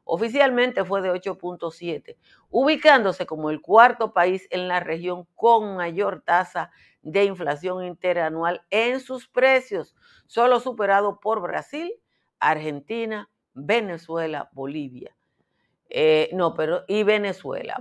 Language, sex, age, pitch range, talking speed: Spanish, female, 50-69, 165-215 Hz, 110 wpm